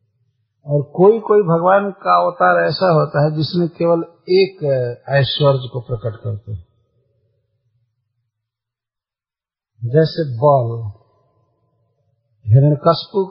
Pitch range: 115-165 Hz